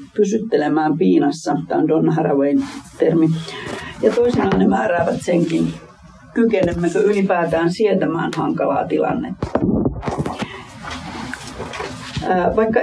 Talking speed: 85 wpm